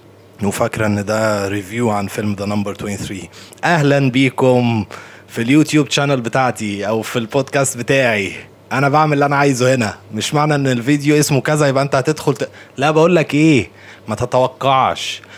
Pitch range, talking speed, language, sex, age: 100-135 Hz, 160 wpm, Arabic, male, 20-39